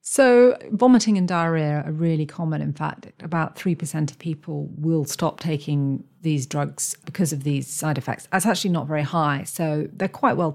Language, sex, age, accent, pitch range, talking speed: English, female, 40-59, British, 150-185 Hz, 180 wpm